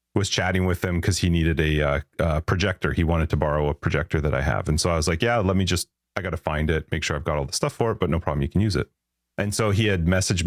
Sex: male